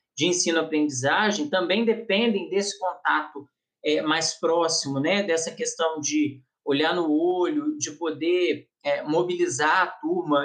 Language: Portuguese